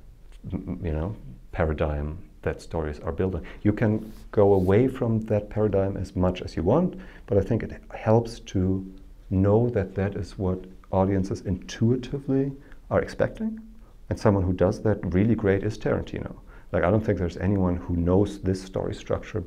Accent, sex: German, male